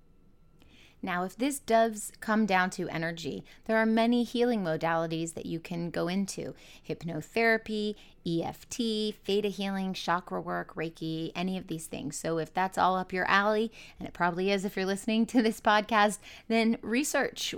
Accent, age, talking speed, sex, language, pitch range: American, 30-49, 165 wpm, female, English, 165-210 Hz